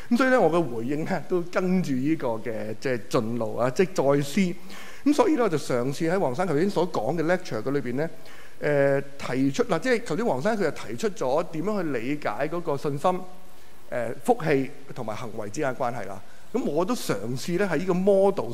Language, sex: Chinese, male